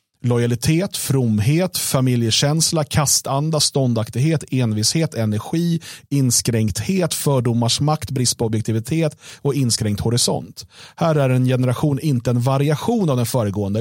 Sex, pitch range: male, 115-150 Hz